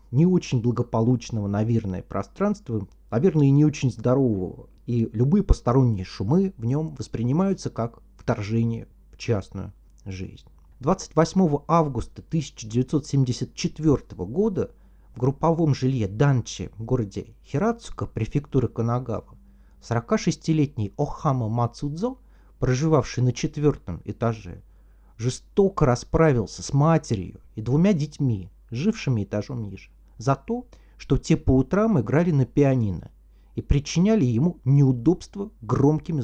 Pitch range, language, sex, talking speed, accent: 110-160 Hz, Russian, male, 110 wpm, native